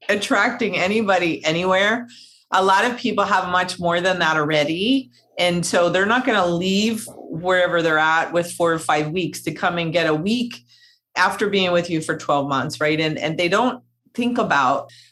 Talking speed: 190 wpm